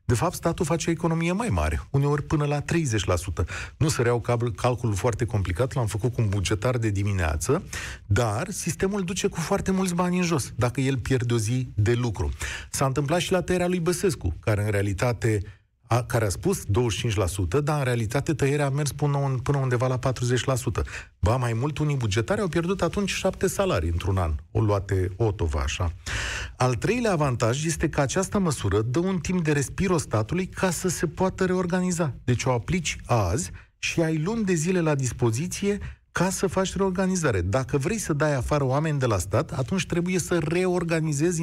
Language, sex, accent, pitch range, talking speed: Romanian, male, native, 115-175 Hz, 185 wpm